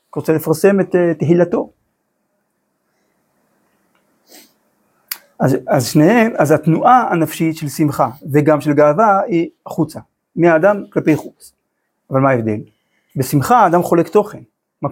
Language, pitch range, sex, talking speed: Hebrew, 145-180 Hz, male, 115 wpm